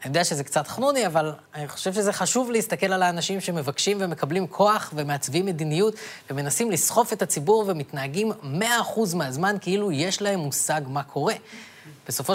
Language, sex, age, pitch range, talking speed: Hebrew, female, 20-39, 150-205 Hz, 155 wpm